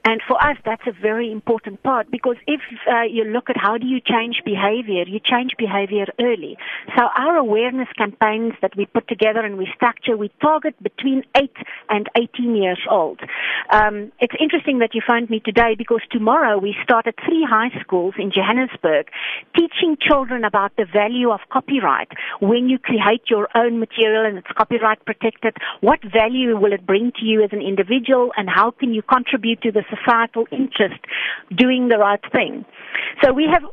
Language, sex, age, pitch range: English, female, 50-69, 210-255 Hz